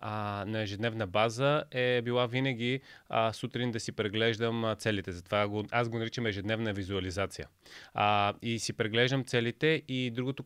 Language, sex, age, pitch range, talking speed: Bulgarian, male, 20-39, 115-135 Hz, 130 wpm